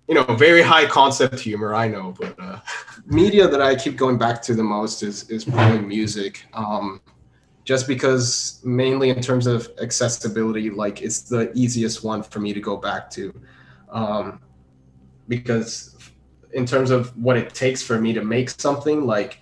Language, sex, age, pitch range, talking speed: English, male, 20-39, 105-125 Hz, 175 wpm